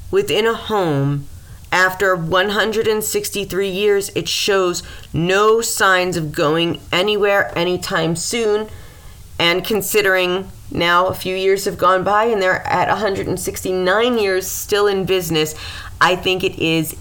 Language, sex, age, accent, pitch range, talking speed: English, female, 30-49, American, 160-205 Hz, 125 wpm